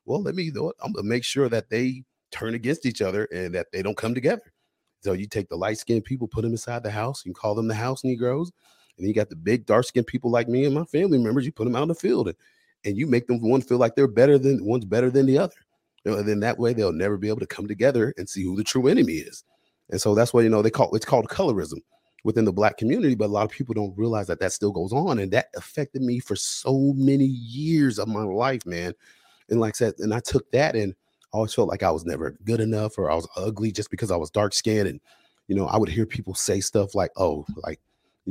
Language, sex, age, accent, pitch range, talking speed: English, male, 30-49, American, 105-125 Hz, 270 wpm